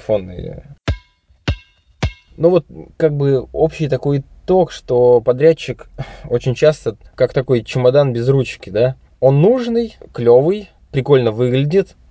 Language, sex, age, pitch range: Russian, male, 20-39, 110-145 Hz